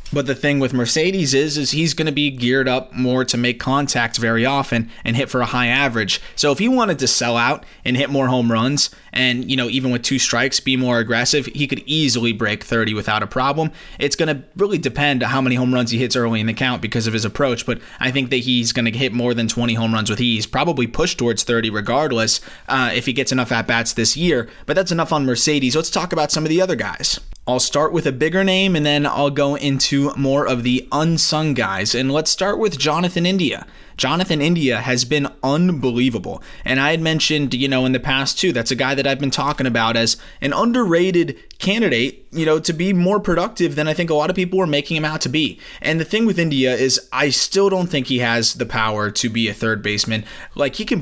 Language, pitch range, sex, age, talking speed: English, 120-155 Hz, male, 20-39, 245 wpm